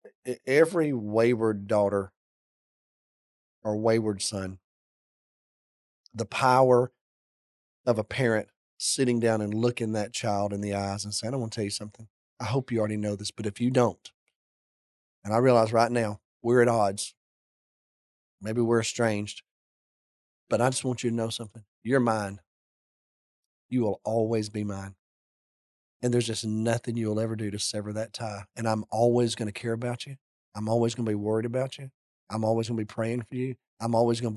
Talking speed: 180 wpm